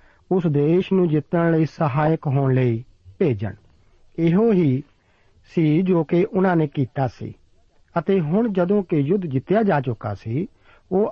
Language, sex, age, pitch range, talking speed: Punjabi, male, 50-69, 125-175 Hz, 150 wpm